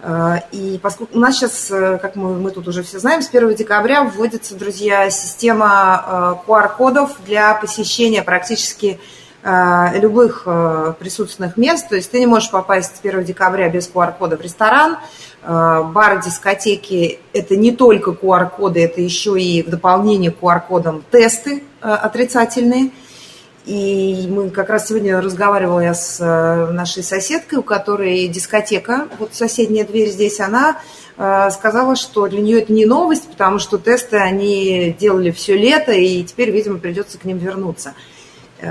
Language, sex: Russian, female